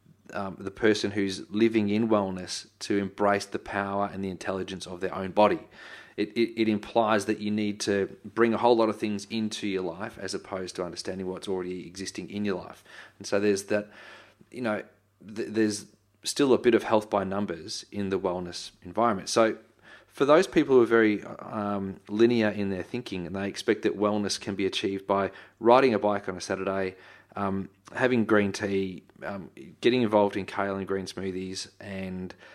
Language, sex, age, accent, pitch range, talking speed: English, male, 30-49, Australian, 95-110 Hz, 190 wpm